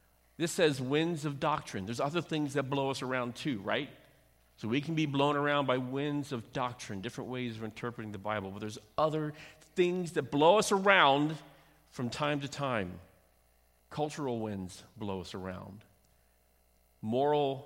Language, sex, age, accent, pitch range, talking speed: English, male, 50-69, American, 95-140 Hz, 165 wpm